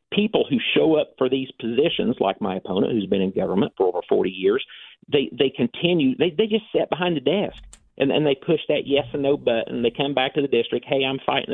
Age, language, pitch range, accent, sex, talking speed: 50-69, English, 120-165 Hz, American, male, 240 wpm